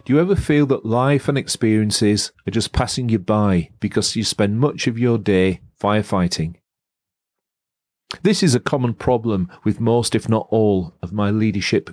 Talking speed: 170 wpm